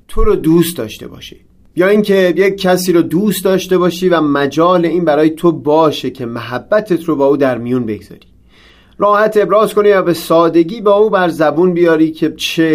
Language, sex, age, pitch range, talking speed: Persian, male, 30-49, 135-175 Hz, 185 wpm